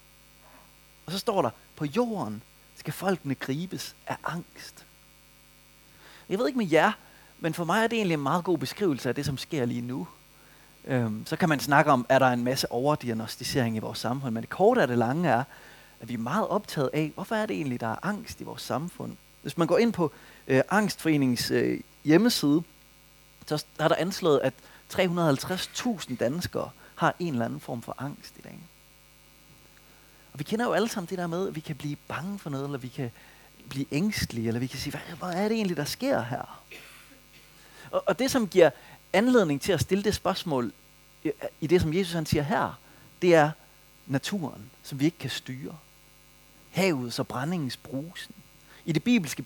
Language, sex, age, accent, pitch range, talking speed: Danish, male, 30-49, native, 135-180 Hz, 190 wpm